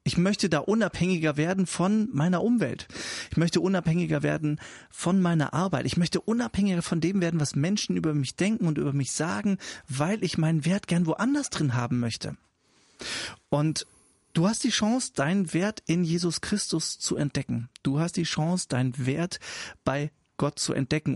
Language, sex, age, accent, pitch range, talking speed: English, male, 30-49, German, 145-200 Hz, 175 wpm